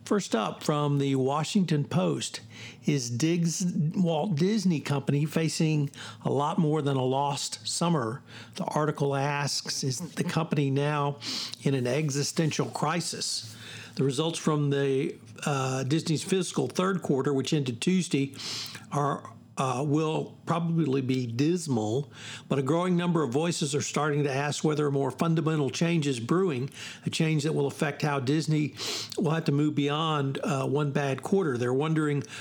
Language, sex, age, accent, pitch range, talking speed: English, male, 60-79, American, 135-160 Hz, 155 wpm